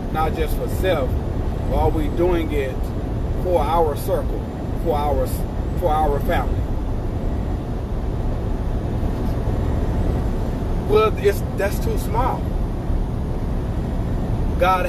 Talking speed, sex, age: 90 wpm, male, 30-49